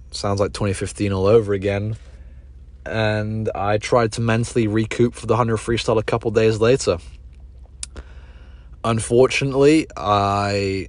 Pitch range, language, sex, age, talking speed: 70-110 Hz, English, male, 20-39, 120 wpm